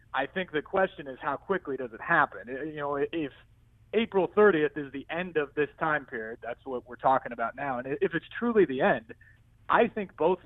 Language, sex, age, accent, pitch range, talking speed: English, male, 30-49, American, 130-170 Hz, 210 wpm